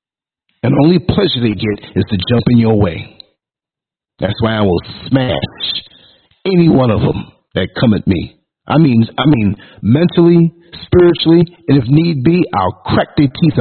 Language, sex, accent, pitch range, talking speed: English, male, American, 115-165 Hz, 170 wpm